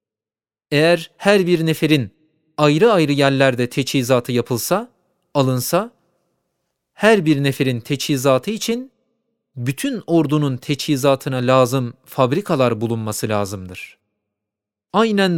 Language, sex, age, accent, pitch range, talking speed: Turkish, male, 40-59, native, 135-180 Hz, 90 wpm